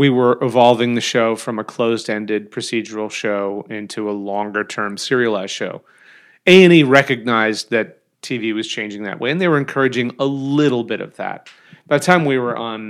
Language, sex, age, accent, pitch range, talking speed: English, male, 30-49, American, 110-135 Hz, 175 wpm